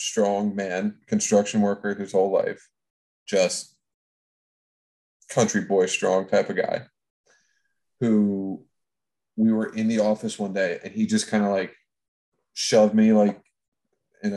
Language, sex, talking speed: English, male, 135 wpm